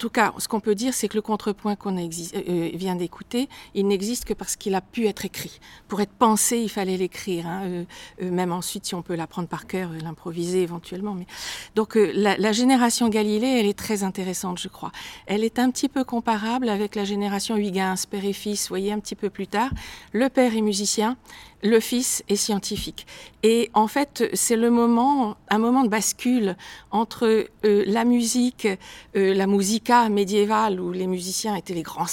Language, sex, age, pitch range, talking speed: French, female, 50-69, 185-225 Hz, 205 wpm